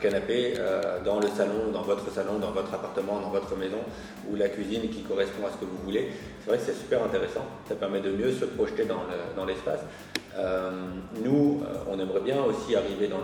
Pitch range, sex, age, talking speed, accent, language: 100-115 Hz, male, 30-49, 220 wpm, French, French